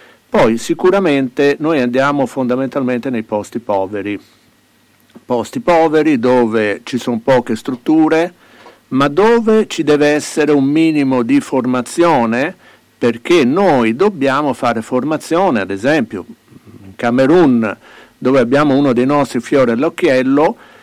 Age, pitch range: 50-69, 115-155 Hz